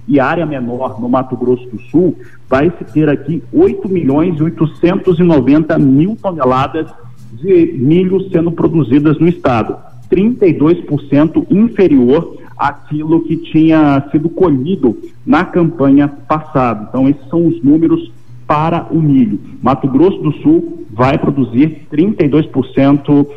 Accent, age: Brazilian, 40-59